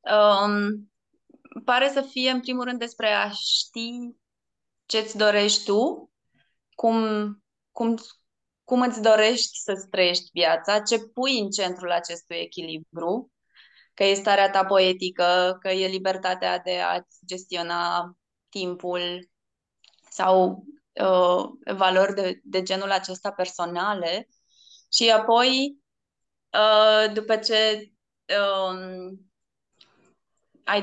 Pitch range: 180-220 Hz